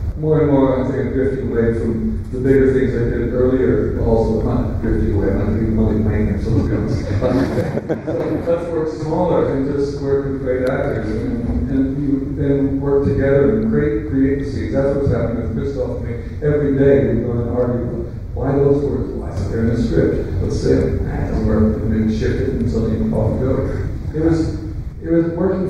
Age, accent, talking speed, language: 40-59, American, 220 wpm, English